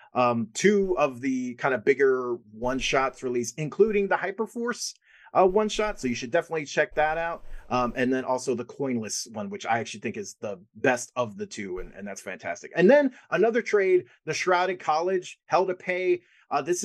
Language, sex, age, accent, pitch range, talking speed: English, male, 30-49, American, 130-185 Hz, 200 wpm